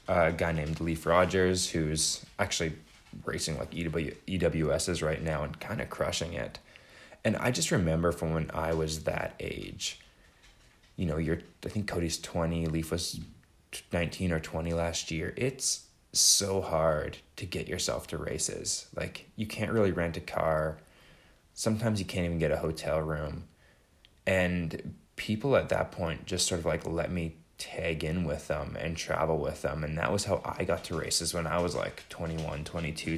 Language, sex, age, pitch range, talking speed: French, male, 20-39, 80-95 Hz, 175 wpm